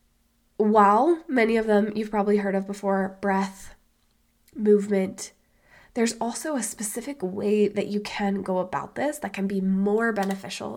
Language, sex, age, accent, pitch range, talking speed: English, female, 20-39, American, 195-210 Hz, 150 wpm